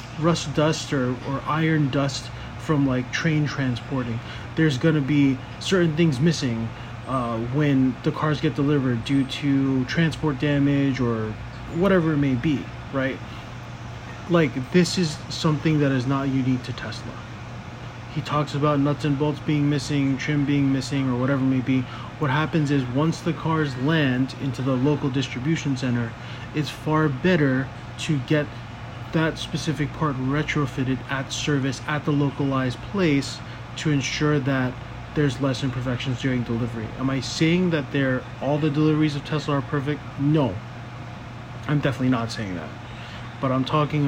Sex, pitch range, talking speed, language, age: male, 120-150 Hz, 155 wpm, English, 20-39